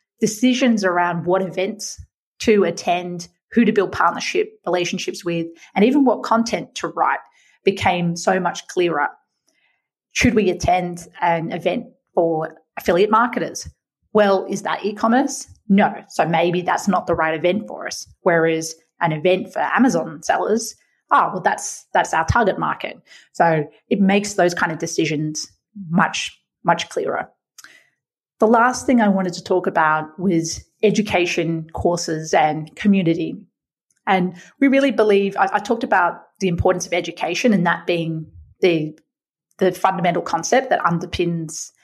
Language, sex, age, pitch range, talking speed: English, female, 30-49, 165-215 Hz, 145 wpm